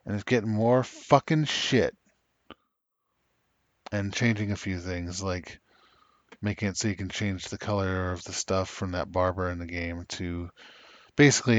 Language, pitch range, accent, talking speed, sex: English, 90-105 Hz, American, 160 wpm, male